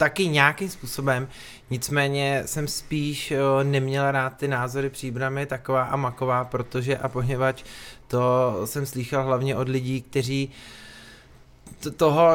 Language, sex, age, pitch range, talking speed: Czech, male, 20-39, 120-140 Hz, 120 wpm